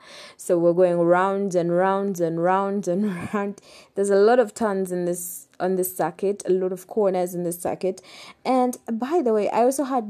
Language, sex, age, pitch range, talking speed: English, female, 20-39, 185-245 Hz, 200 wpm